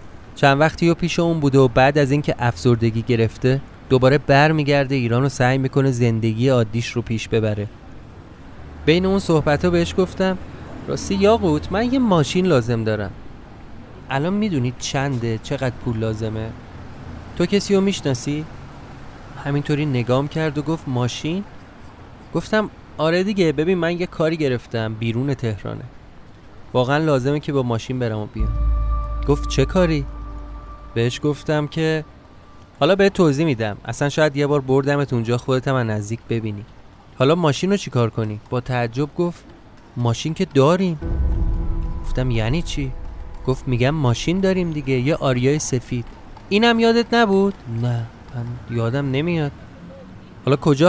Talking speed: 135 wpm